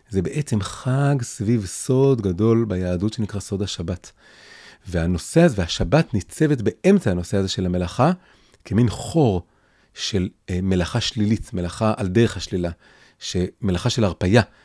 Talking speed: 125 wpm